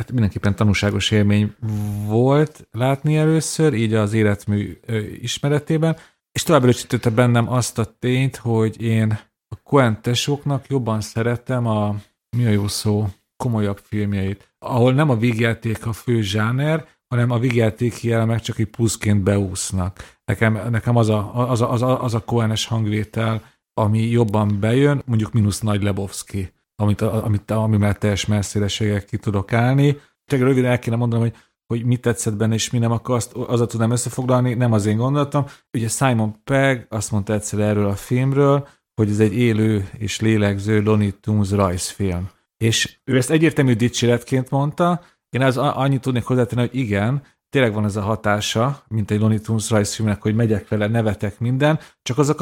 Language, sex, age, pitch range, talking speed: Hungarian, male, 40-59, 105-125 Hz, 160 wpm